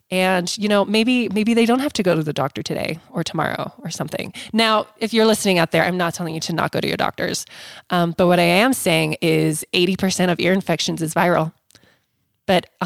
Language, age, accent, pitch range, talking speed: English, 20-39, American, 165-205 Hz, 225 wpm